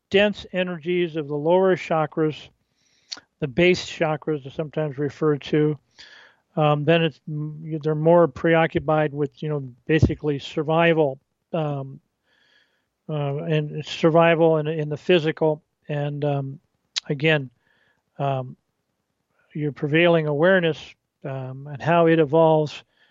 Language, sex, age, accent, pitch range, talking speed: English, male, 40-59, American, 150-175 Hz, 115 wpm